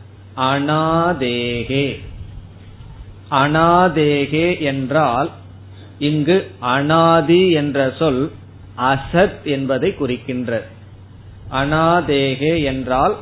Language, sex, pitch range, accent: Tamil, male, 100-155 Hz, native